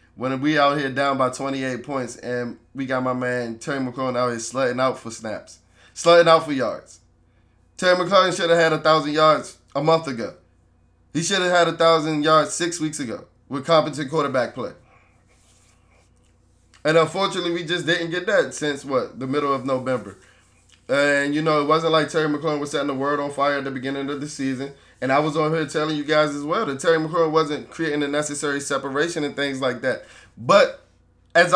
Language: English